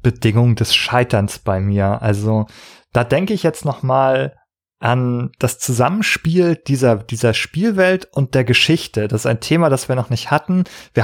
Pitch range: 120-160 Hz